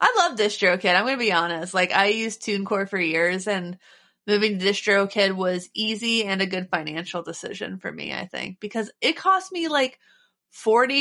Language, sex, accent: English, female, American